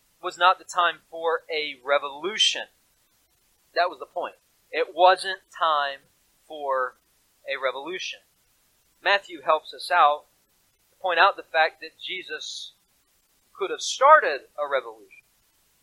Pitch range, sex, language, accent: 155-225 Hz, male, English, American